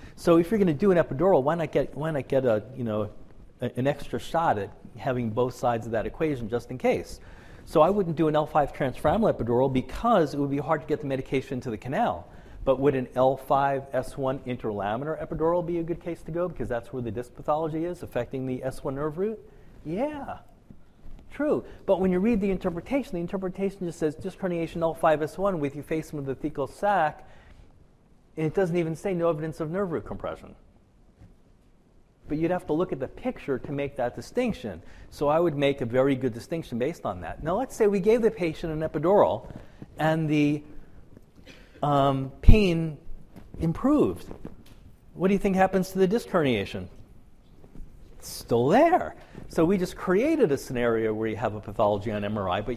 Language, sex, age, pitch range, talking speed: English, male, 40-59, 130-180 Hz, 195 wpm